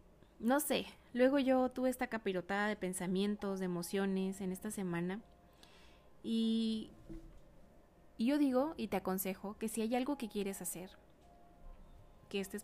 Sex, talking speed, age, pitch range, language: female, 140 wpm, 20-39, 180-215 Hz, Spanish